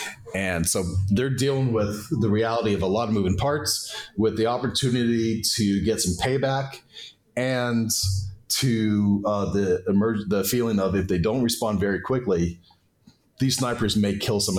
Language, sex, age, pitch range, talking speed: English, male, 40-59, 95-125 Hz, 160 wpm